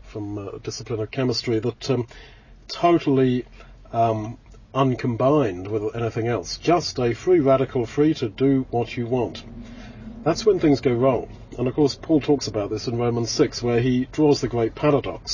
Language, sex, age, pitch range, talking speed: English, male, 40-59, 115-140 Hz, 170 wpm